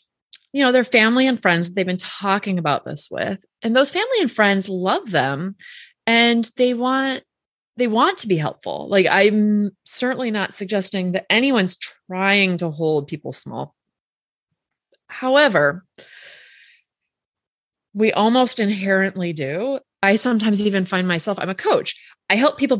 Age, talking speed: 20-39, 145 wpm